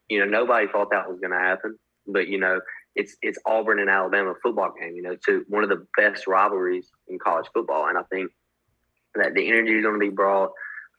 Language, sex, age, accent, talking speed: English, male, 20-39, American, 230 wpm